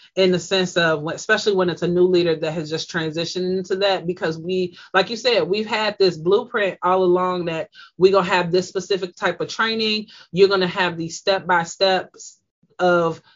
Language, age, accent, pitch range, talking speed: English, 30-49, American, 175-200 Hz, 190 wpm